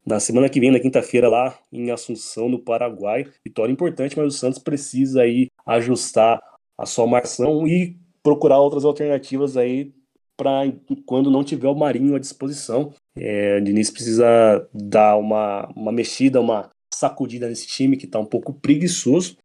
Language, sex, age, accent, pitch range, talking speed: Portuguese, male, 20-39, Brazilian, 115-145 Hz, 160 wpm